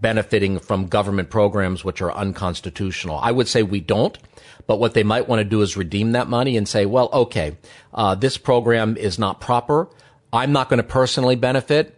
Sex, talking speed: male, 195 wpm